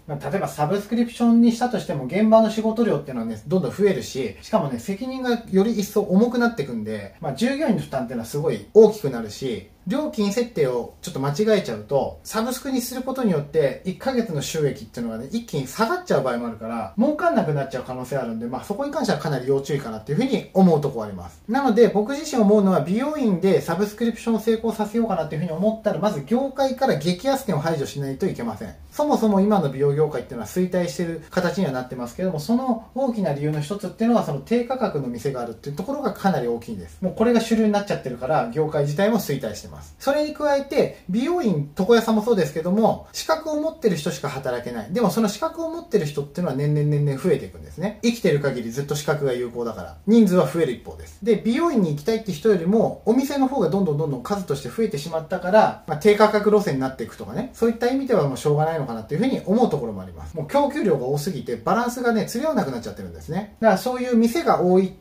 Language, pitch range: Japanese, 145-230 Hz